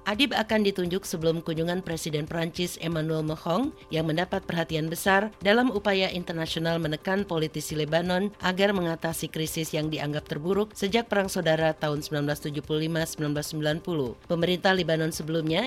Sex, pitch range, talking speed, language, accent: female, 160-190 Hz, 125 wpm, Indonesian, native